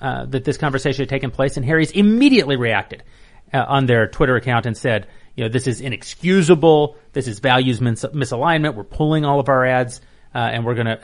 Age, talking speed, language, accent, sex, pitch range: 30-49, 205 wpm, English, American, male, 115-155 Hz